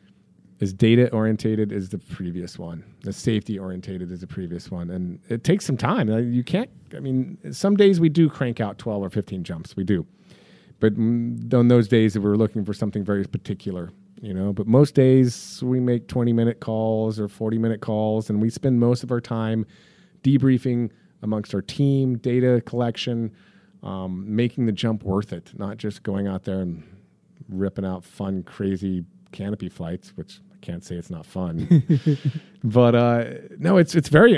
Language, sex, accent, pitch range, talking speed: English, male, American, 105-130 Hz, 175 wpm